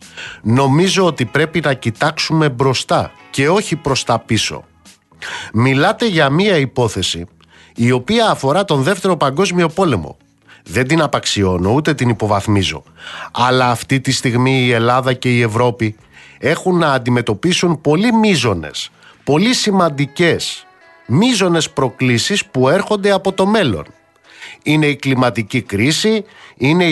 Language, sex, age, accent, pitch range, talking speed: Greek, male, 50-69, native, 125-190 Hz, 125 wpm